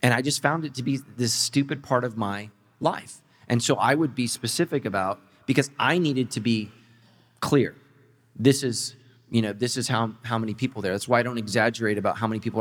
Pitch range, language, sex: 100-125 Hz, English, male